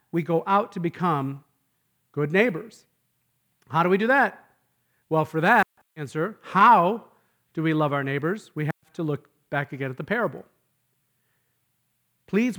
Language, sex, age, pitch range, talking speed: English, male, 40-59, 155-210 Hz, 155 wpm